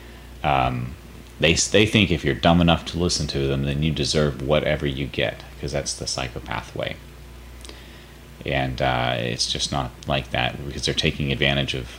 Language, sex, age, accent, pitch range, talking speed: English, male, 30-49, American, 65-75 Hz, 175 wpm